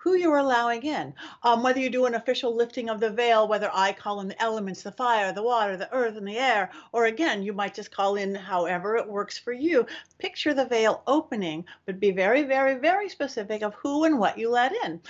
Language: English